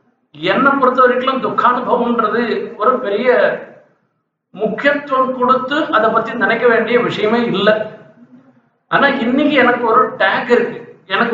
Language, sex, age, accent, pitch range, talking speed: Tamil, male, 50-69, native, 215-265 Hz, 115 wpm